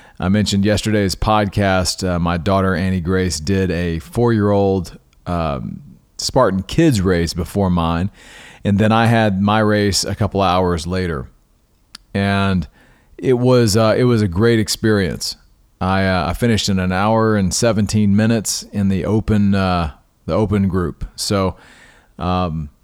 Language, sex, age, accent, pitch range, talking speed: English, male, 40-59, American, 90-110 Hz, 150 wpm